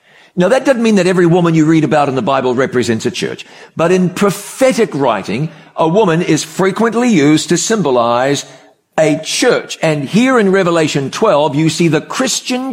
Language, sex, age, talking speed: English, male, 50-69, 180 wpm